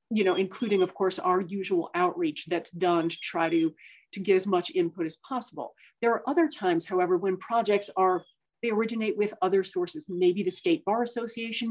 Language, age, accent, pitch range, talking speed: English, 40-59, American, 180-220 Hz, 195 wpm